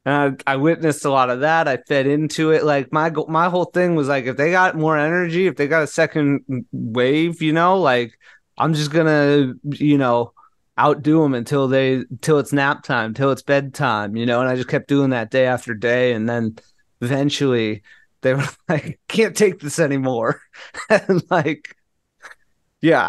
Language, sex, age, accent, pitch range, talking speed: English, male, 30-49, American, 125-155 Hz, 190 wpm